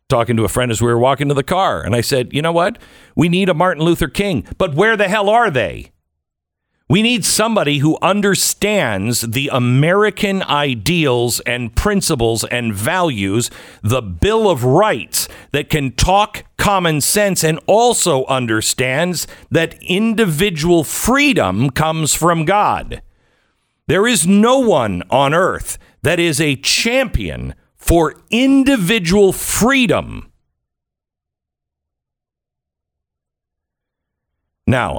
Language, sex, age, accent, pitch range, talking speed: English, male, 50-69, American, 110-175 Hz, 125 wpm